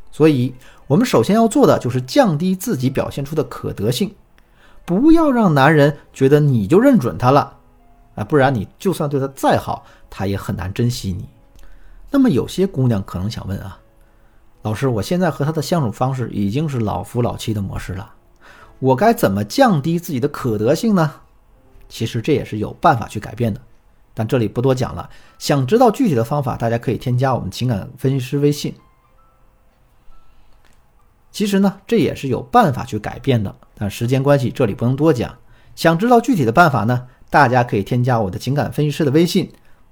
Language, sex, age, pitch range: Chinese, male, 50-69, 115-160 Hz